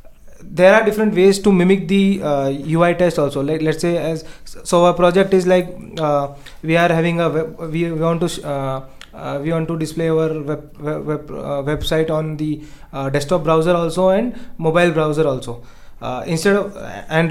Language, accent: English, Indian